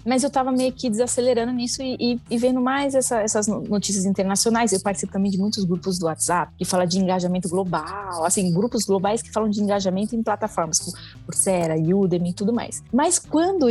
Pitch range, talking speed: 175-215 Hz, 200 wpm